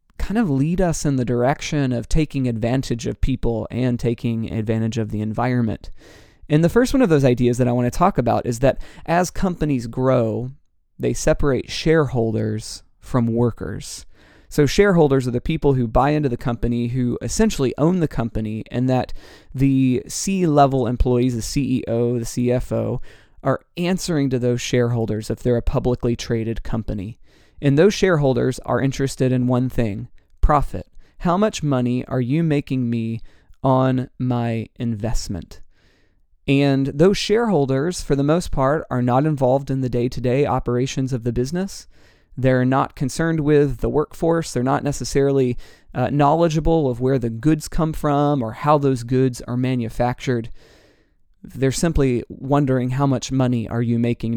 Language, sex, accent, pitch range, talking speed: English, male, American, 120-145 Hz, 160 wpm